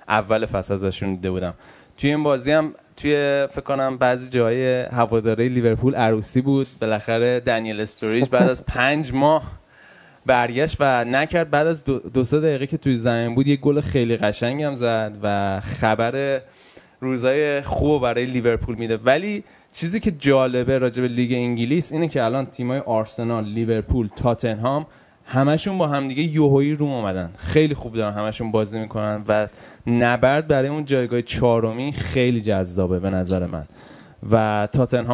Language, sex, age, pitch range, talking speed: Persian, male, 20-39, 110-140 Hz, 155 wpm